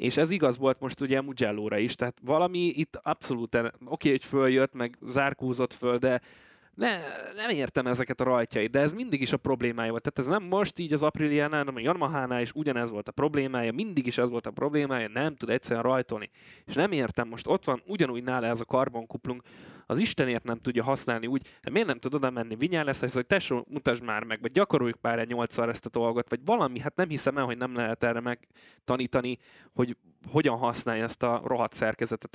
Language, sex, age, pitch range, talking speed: Hungarian, male, 20-39, 115-140 Hz, 215 wpm